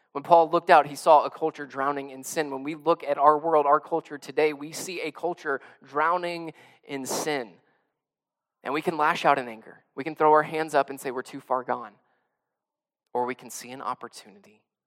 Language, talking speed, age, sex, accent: English, 210 wpm, 20-39, male, American